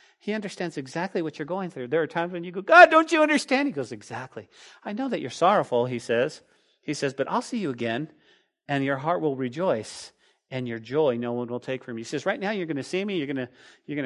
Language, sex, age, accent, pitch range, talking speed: English, male, 40-59, American, 135-195 Hz, 255 wpm